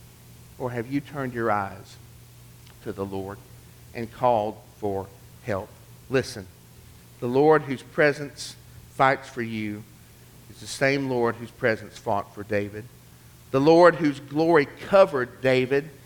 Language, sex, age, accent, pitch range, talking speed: English, male, 50-69, American, 105-130 Hz, 135 wpm